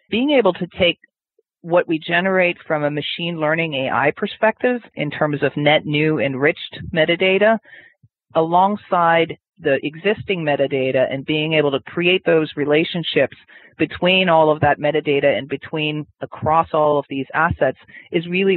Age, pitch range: 40-59, 135-160 Hz